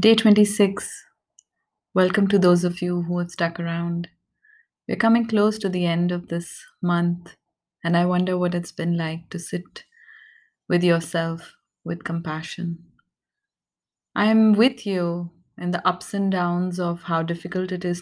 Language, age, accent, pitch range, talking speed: English, 30-49, Indian, 165-200 Hz, 155 wpm